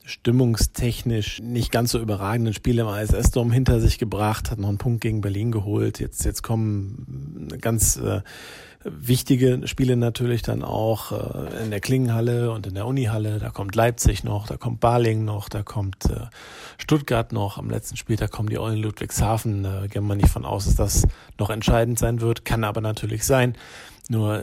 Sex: male